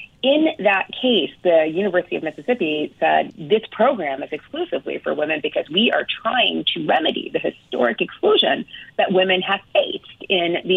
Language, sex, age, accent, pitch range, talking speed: English, female, 30-49, American, 165-230 Hz, 160 wpm